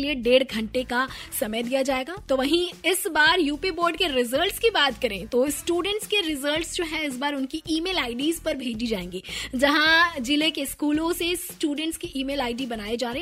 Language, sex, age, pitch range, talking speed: Hindi, female, 20-39, 255-330 Hz, 200 wpm